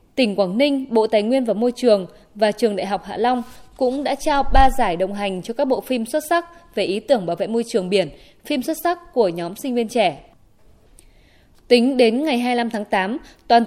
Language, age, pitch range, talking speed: Vietnamese, 20-39, 205-265 Hz, 225 wpm